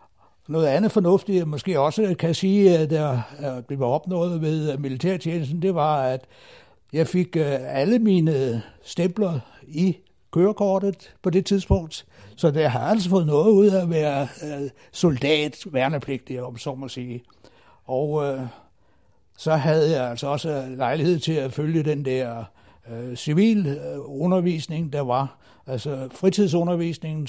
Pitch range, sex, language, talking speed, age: 130-175 Hz, male, Danish, 135 wpm, 60-79